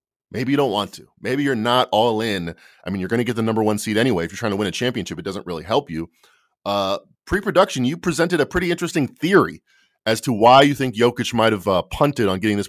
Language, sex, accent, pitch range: English, male, American, 105-145 Hz